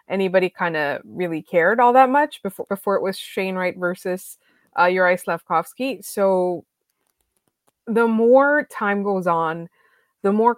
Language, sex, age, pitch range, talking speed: English, female, 20-39, 185-220 Hz, 140 wpm